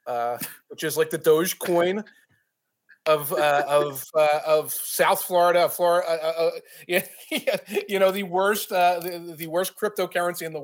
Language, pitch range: English, 170-225 Hz